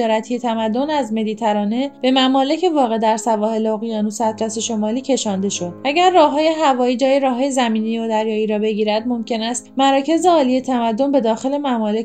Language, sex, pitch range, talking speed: Persian, female, 215-270 Hz, 155 wpm